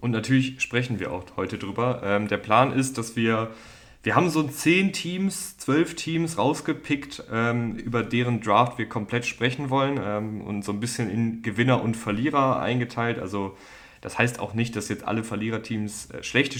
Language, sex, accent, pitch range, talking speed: German, male, German, 100-120 Hz, 165 wpm